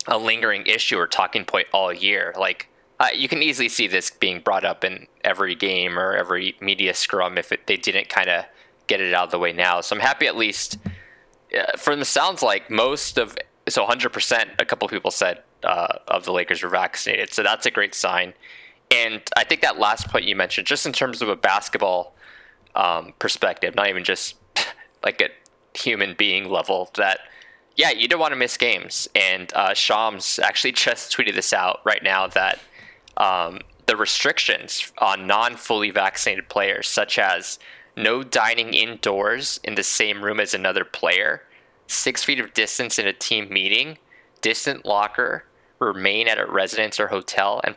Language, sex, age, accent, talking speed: English, male, 20-39, American, 185 wpm